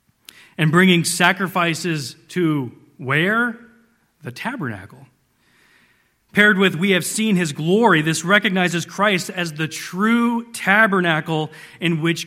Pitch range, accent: 145-190 Hz, American